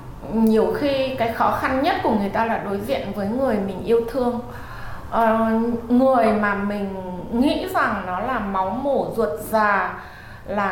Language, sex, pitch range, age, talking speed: Vietnamese, female, 195-255 Hz, 20-39, 170 wpm